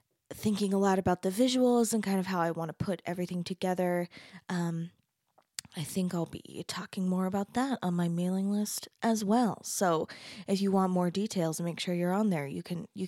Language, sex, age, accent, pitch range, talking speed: English, female, 20-39, American, 180-225 Hz, 205 wpm